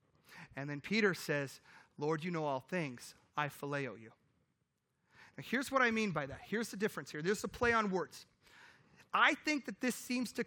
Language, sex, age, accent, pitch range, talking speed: English, male, 30-49, American, 160-230 Hz, 195 wpm